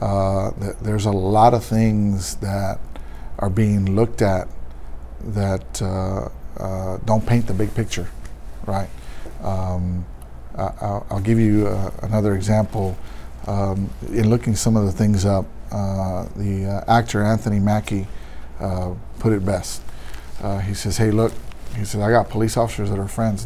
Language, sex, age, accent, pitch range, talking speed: English, male, 50-69, American, 90-110 Hz, 160 wpm